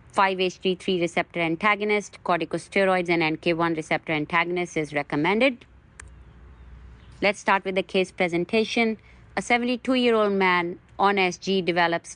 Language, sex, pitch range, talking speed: English, female, 175-205 Hz, 110 wpm